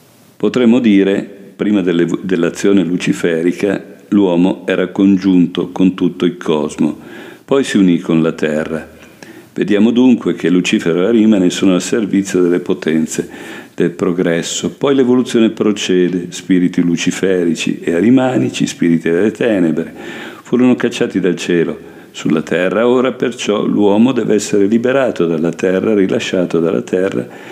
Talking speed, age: 125 wpm, 50-69